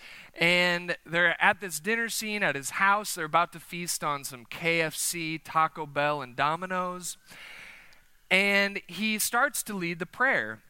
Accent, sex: American, male